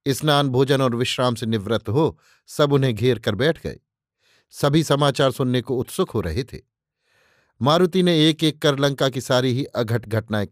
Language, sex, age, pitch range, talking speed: Hindi, male, 50-69, 125-150 Hz, 185 wpm